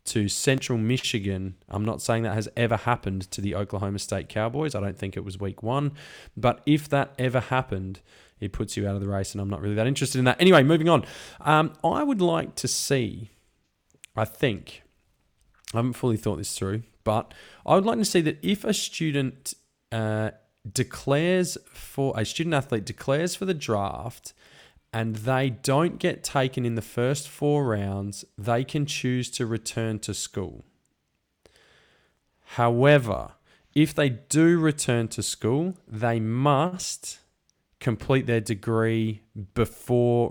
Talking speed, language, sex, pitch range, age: 160 wpm, English, male, 105-135 Hz, 20-39